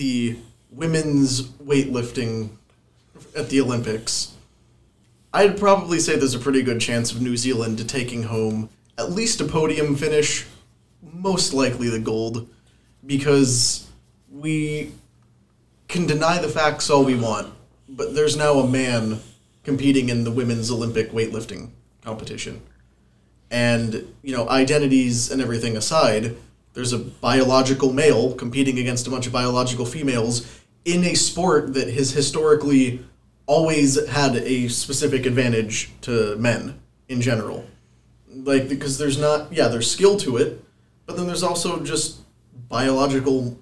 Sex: male